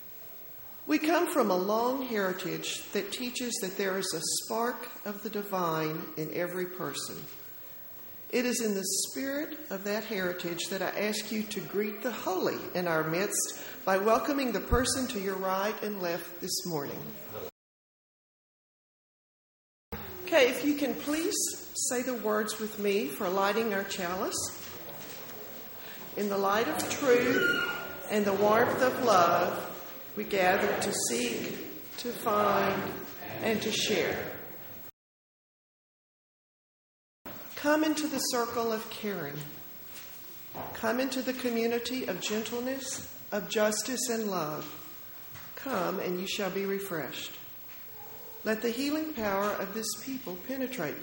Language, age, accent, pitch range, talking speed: English, 40-59, American, 190-245 Hz, 130 wpm